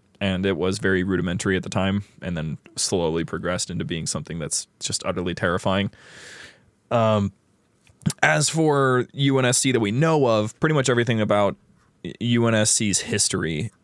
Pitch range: 95-115 Hz